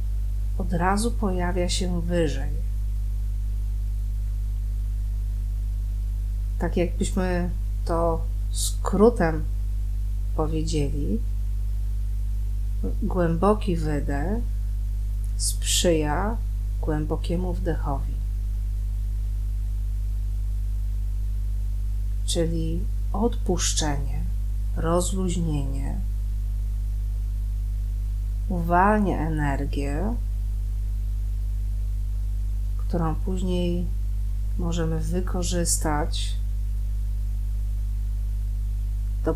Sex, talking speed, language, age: female, 40 wpm, Polish, 40-59